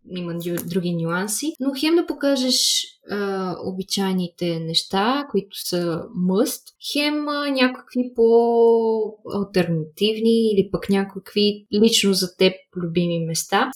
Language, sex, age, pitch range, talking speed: Bulgarian, female, 20-39, 190-250 Hz, 115 wpm